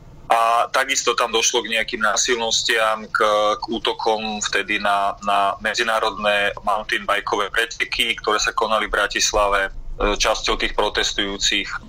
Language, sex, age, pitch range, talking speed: Slovak, male, 30-49, 105-120 Hz, 125 wpm